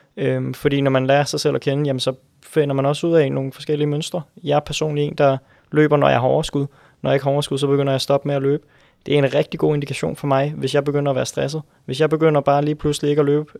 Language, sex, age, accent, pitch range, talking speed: Danish, male, 20-39, native, 135-150 Hz, 280 wpm